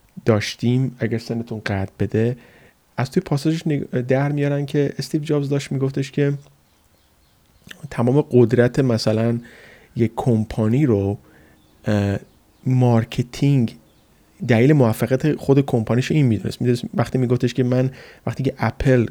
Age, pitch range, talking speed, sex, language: 30-49, 110-135 Hz, 115 wpm, male, Persian